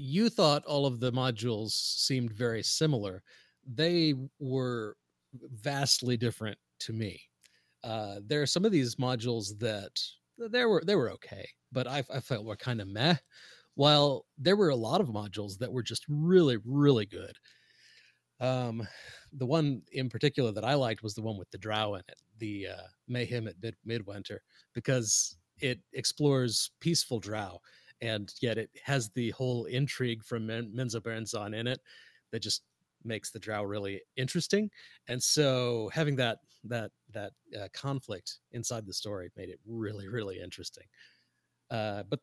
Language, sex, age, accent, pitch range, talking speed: English, male, 30-49, American, 110-140 Hz, 160 wpm